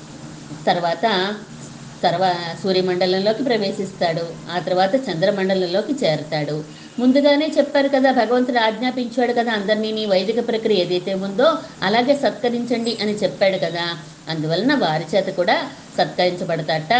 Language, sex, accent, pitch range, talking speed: Telugu, female, native, 170-250 Hz, 110 wpm